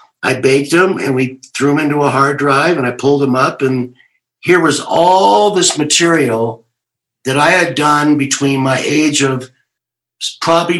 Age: 50-69